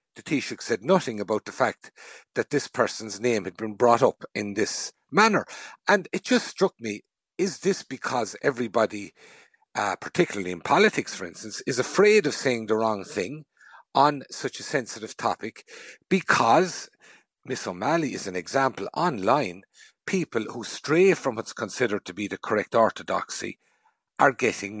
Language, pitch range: English, 105-155 Hz